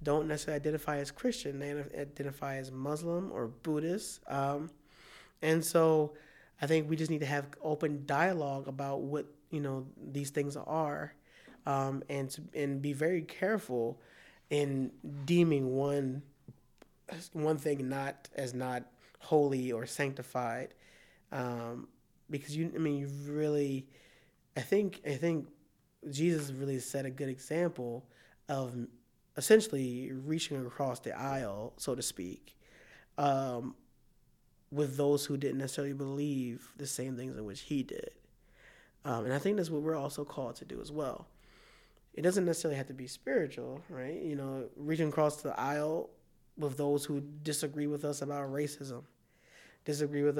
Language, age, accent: English, 20-39, American